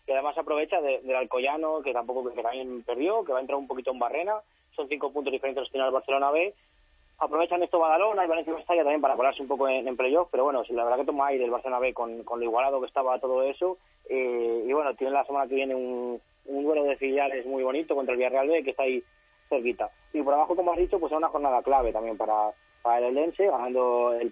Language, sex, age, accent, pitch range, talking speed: Spanish, male, 20-39, Spanish, 120-150 Hz, 250 wpm